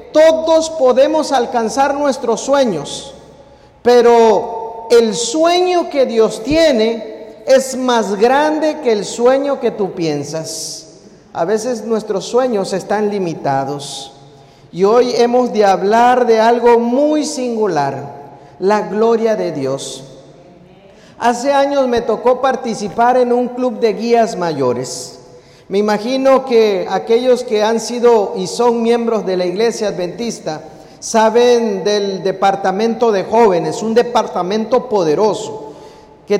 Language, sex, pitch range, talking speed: Spanish, male, 195-250 Hz, 120 wpm